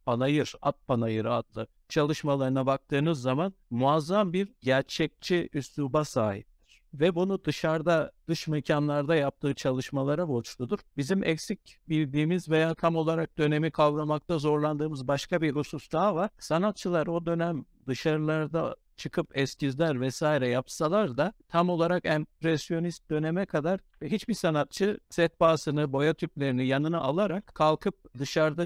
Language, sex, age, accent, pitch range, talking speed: Turkish, male, 60-79, native, 140-175 Hz, 125 wpm